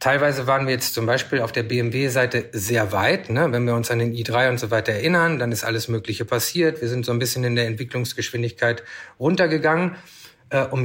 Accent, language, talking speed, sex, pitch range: German, German, 200 wpm, male, 120-145 Hz